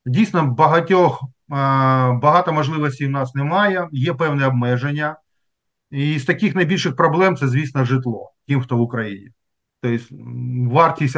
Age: 40-59